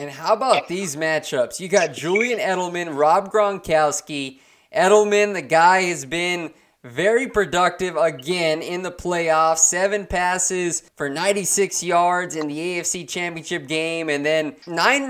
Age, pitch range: 20-39, 160-195 Hz